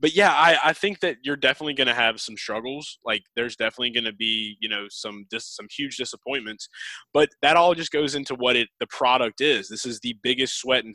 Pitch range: 110-130 Hz